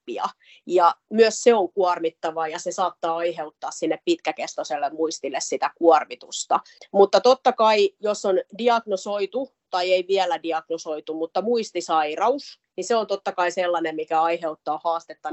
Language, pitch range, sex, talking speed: Finnish, 170-215 Hz, female, 135 wpm